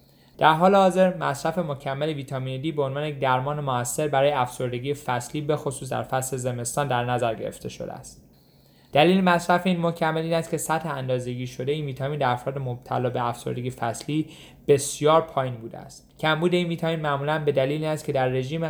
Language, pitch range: Persian, 130-160 Hz